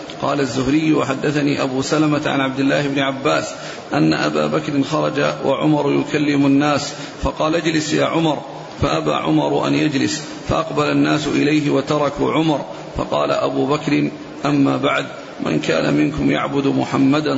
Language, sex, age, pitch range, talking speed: Arabic, male, 40-59, 140-155 Hz, 140 wpm